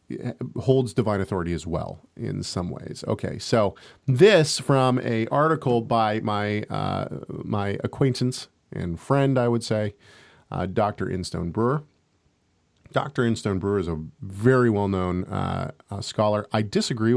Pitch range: 95-130 Hz